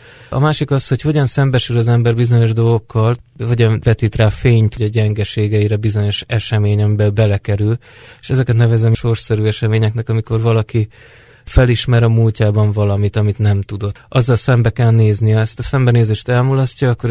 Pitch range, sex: 105-120 Hz, male